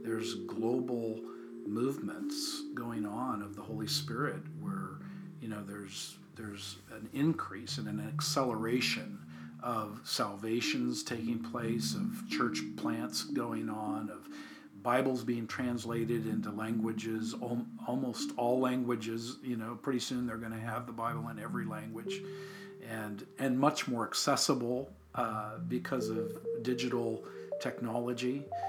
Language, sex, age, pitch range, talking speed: English, male, 50-69, 115-140 Hz, 130 wpm